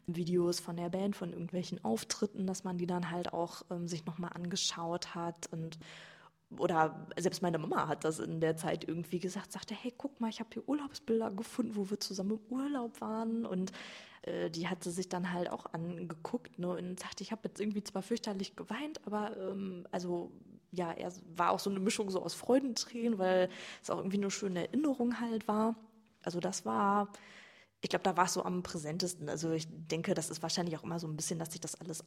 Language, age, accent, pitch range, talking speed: German, 20-39, German, 170-200 Hz, 210 wpm